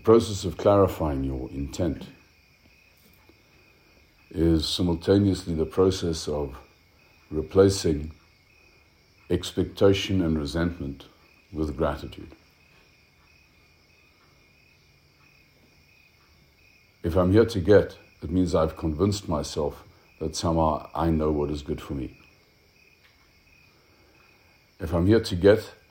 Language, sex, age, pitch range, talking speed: English, male, 60-79, 80-95 Hz, 95 wpm